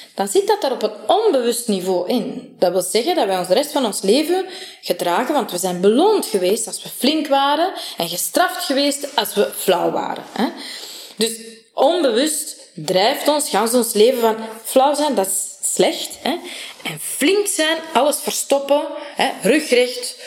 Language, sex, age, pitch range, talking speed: Dutch, female, 20-39, 205-285 Hz, 170 wpm